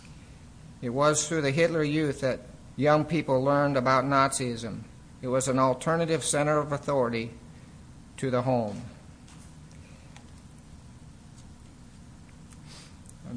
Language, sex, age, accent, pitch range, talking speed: English, male, 50-69, American, 125-140 Hz, 105 wpm